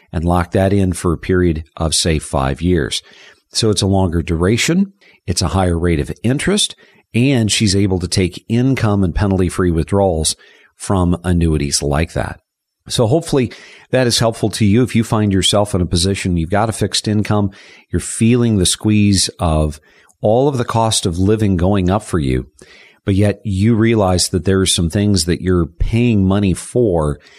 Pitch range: 85-105 Hz